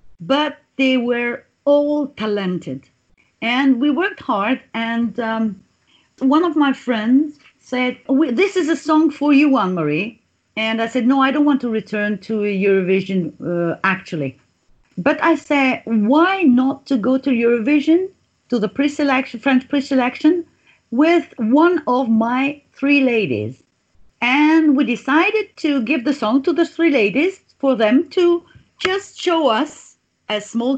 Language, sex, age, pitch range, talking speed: English, female, 50-69, 220-310 Hz, 145 wpm